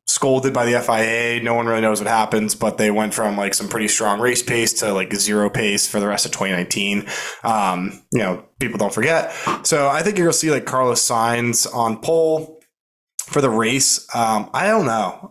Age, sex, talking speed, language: 20-39, male, 210 wpm, English